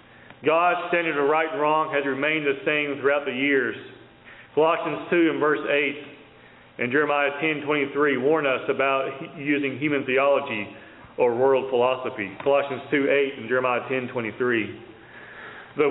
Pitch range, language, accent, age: 140-170 Hz, English, American, 40-59